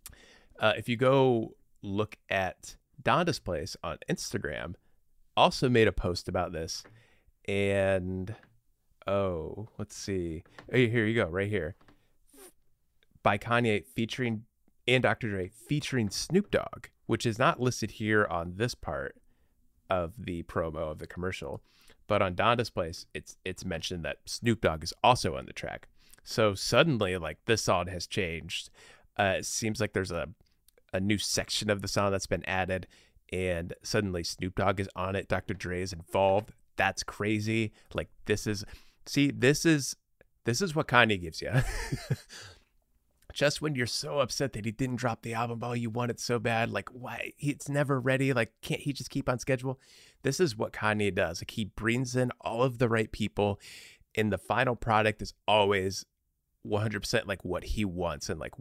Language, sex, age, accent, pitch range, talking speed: English, male, 30-49, American, 95-120 Hz, 170 wpm